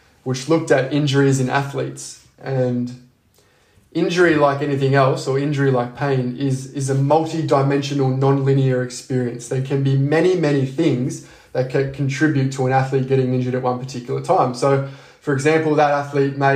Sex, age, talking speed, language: male, 20-39, 165 wpm, English